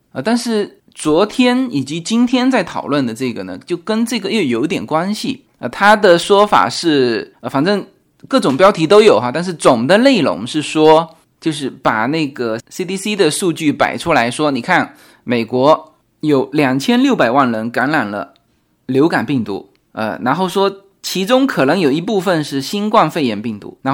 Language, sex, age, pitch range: Chinese, male, 20-39, 135-210 Hz